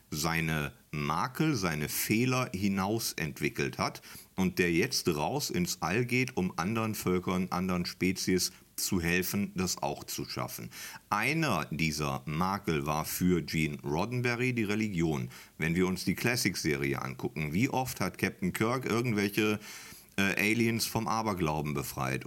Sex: male